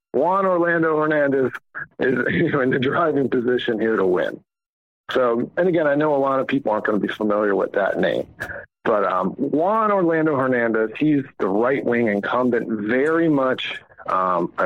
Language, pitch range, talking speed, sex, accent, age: English, 120-160 Hz, 165 wpm, male, American, 50-69